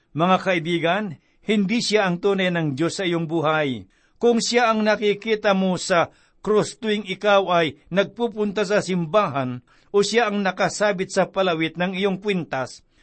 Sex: male